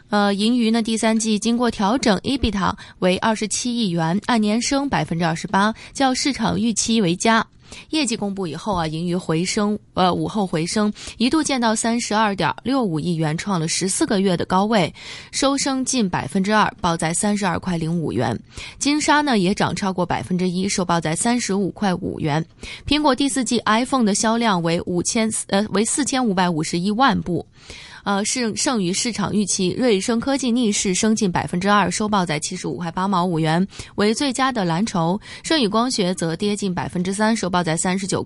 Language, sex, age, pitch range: Chinese, female, 20-39, 175-225 Hz